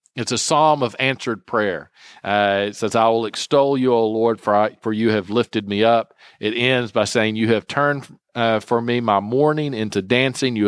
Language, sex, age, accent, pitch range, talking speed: English, male, 40-59, American, 105-135 Hz, 210 wpm